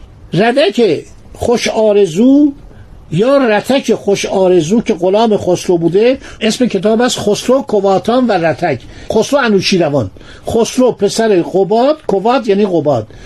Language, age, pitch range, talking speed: Persian, 50-69, 175-240 Hz, 120 wpm